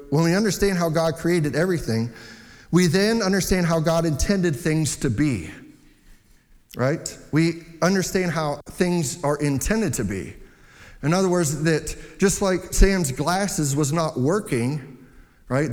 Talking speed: 140 wpm